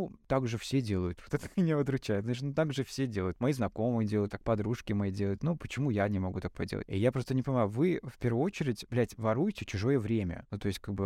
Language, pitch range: Russian, 100-135 Hz